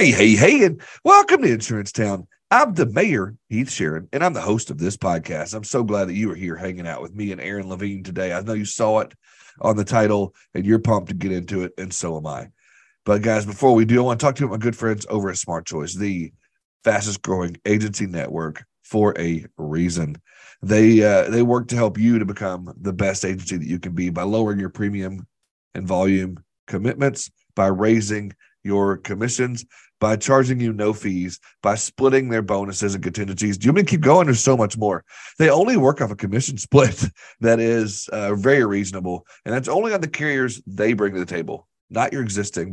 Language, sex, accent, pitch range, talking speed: English, male, American, 95-115 Hz, 215 wpm